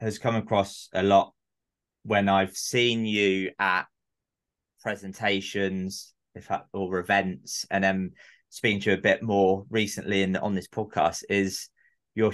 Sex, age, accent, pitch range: male, 20-39, British, 95-110 Hz